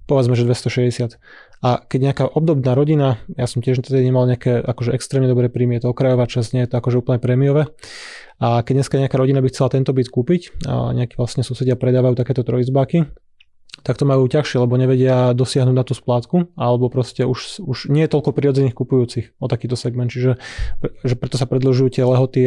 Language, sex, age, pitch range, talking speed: Slovak, male, 20-39, 125-135 Hz, 190 wpm